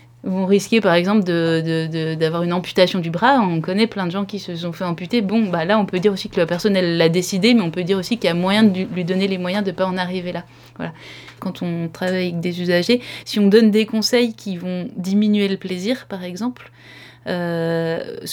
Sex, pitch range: female, 180-210 Hz